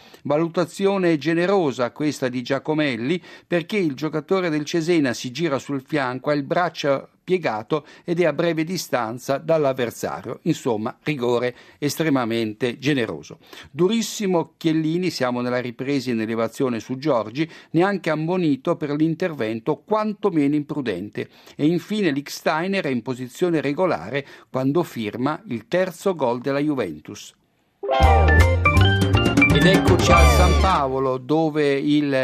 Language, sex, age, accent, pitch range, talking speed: Italian, male, 60-79, native, 130-175 Hz, 120 wpm